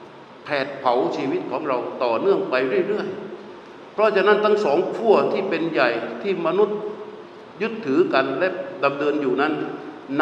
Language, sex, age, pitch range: Thai, male, 60-79, 140-200 Hz